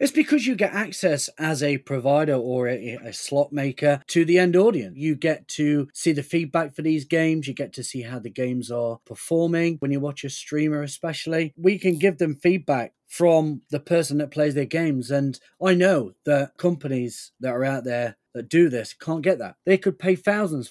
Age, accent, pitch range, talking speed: 30-49, British, 135-180 Hz, 210 wpm